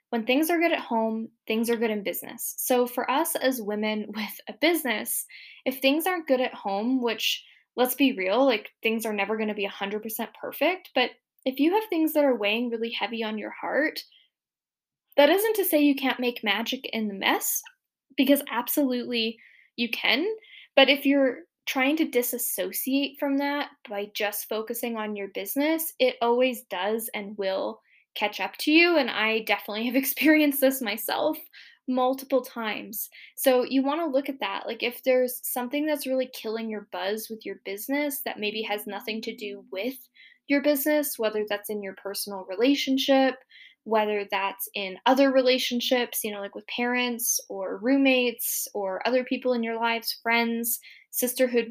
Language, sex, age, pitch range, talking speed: English, female, 10-29, 220-270 Hz, 175 wpm